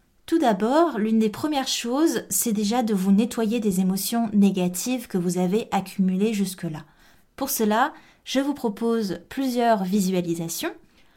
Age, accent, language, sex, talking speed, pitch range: 20-39, French, French, female, 140 wpm, 190-245 Hz